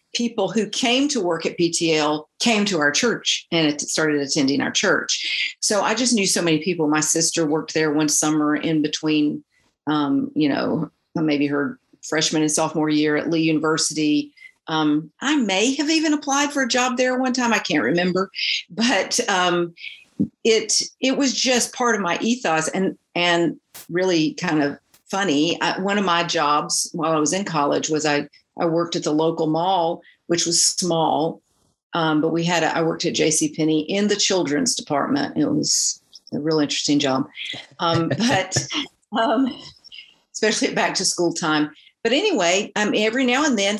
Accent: American